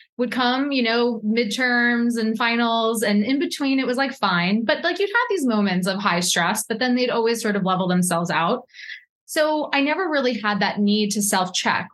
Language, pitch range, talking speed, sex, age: English, 195-245 Hz, 205 wpm, female, 20-39